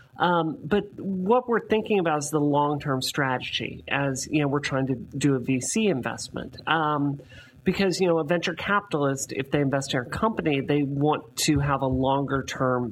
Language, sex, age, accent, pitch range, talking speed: English, male, 40-59, American, 130-165 Hz, 180 wpm